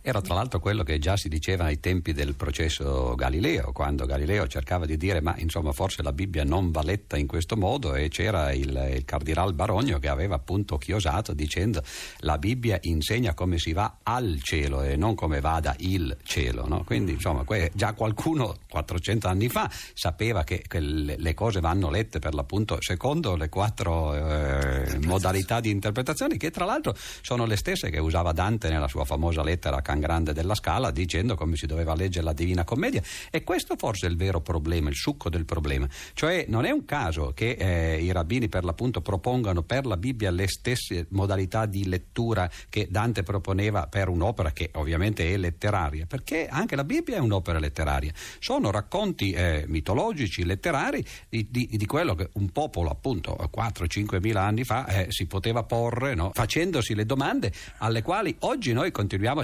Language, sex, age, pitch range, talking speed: Italian, male, 50-69, 80-105 Hz, 185 wpm